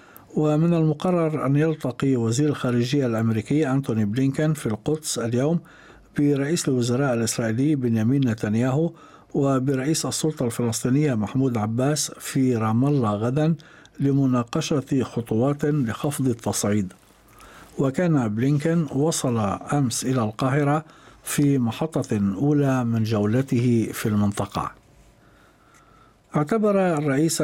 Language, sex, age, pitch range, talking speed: Arabic, male, 60-79, 120-150 Hz, 100 wpm